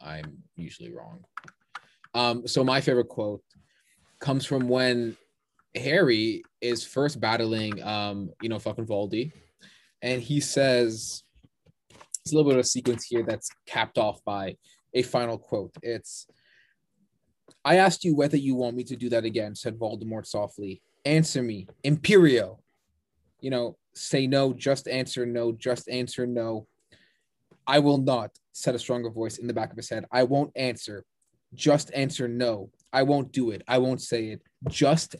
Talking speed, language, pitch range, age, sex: 160 wpm, English, 115-140 Hz, 20-39, male